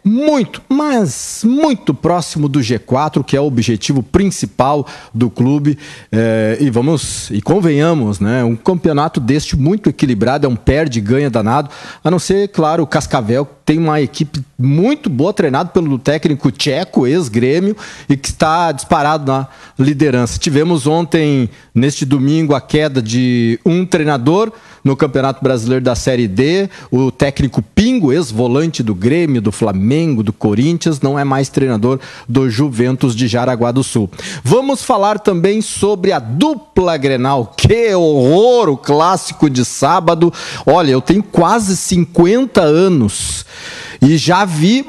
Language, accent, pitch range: Portuguese, Brazilian, 125-180 Hz